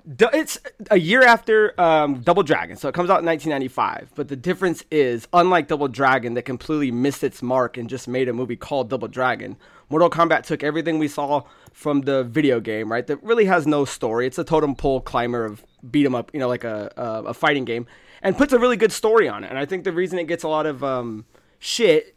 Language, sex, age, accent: English, male, 20-39, American